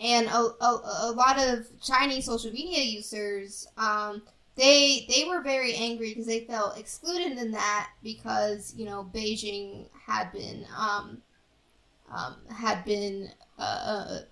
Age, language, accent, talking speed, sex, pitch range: 10-29, English, American, 145 wpm, female, 215-265 Hz